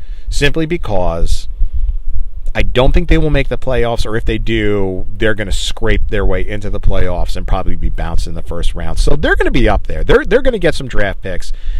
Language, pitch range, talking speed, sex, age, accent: English, 85-120 Hz, 230 wpm, male, 40-59, American